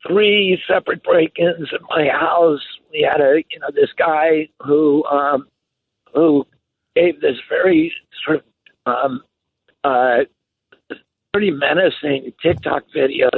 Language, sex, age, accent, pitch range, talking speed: English, male, 60-79, American, 145-190 Hz, 120 wpm